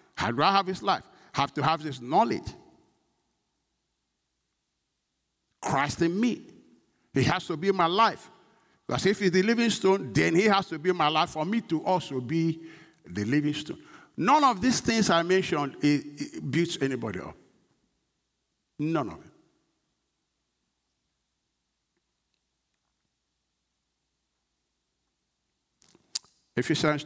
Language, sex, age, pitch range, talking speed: English, male, 60-79, 110-155 Hz, 120 wpm